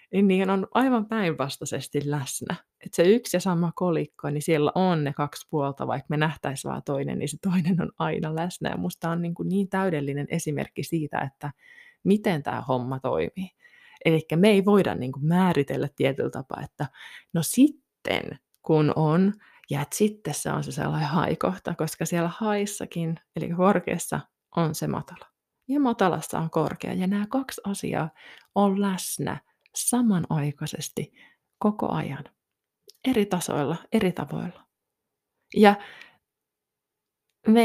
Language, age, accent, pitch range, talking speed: Finnish, 20-39, native, 160-210 Hz, 140 wpm